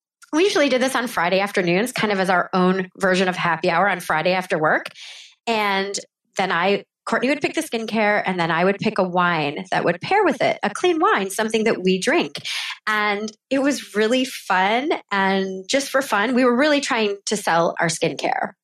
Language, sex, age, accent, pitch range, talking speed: English, female, 20-39, American, 190-245 Hz, 205 wpm